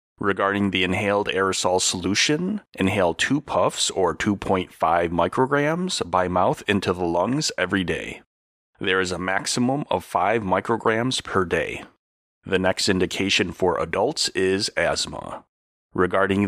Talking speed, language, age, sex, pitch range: 125 wpm, English, 30-49, male, 90-100 Hz